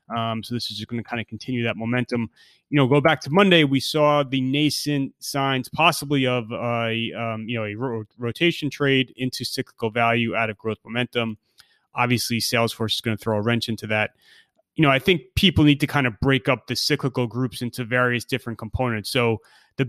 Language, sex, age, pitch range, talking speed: English, male, 30-49, 115-135 Hz, 205 wpm